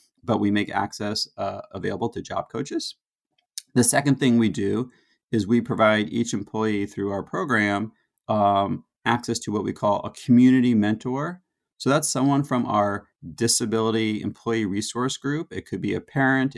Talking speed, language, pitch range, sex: 165 wpm, English, 110-130 Hz, male